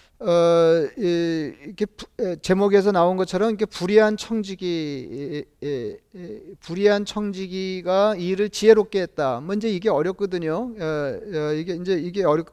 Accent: native